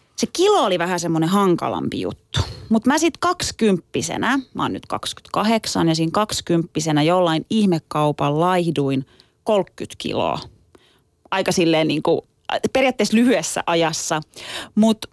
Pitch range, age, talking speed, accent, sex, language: 165-220 Hz, 30-49, 120 wpm, native, female, Finnish